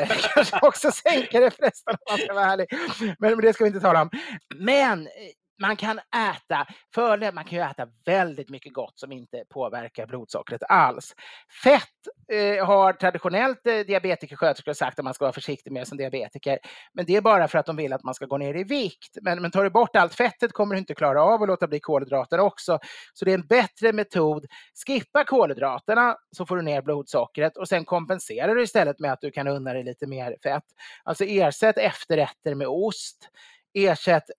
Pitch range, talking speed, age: 145-210 Hz, 190 wpm, 30-49